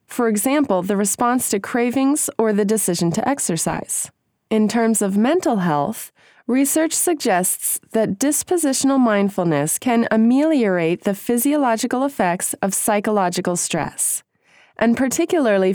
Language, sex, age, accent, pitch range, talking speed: English, female, 20-39, American, 185-250 Hz, 120 wpm